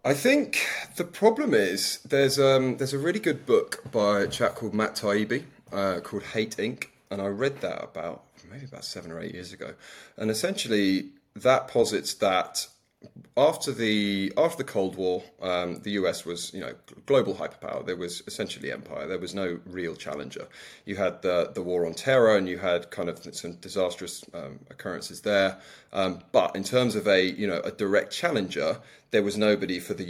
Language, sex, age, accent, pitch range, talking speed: English, male, 30-49, British, 95-125 Hz, 190 wpm